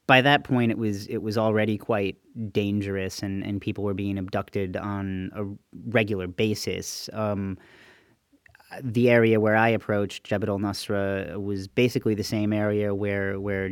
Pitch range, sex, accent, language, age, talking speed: 100-110 Hz, male, American, English, 30-49, 155 wpm